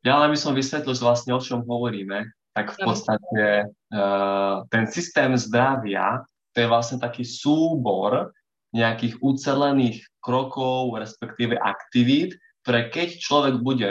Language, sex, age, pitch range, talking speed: Slovak, male, 20-39, 115-130 Hz, 130 wpm